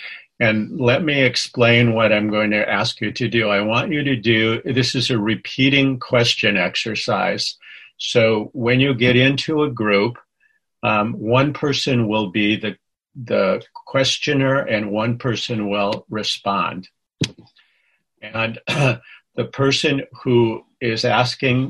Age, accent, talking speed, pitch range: 50-69, American, 140 wpm, 110-130 Hz